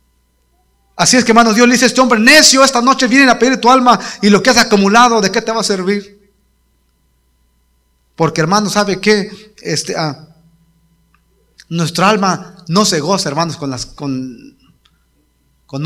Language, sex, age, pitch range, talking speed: Spanish, male, 40-59, 130-170 Hz, 170 wpm